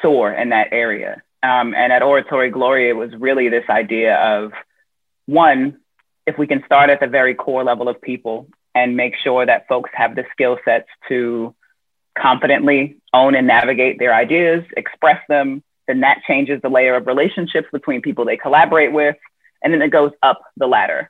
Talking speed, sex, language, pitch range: 180 wpm, female, English, 120-150 Hz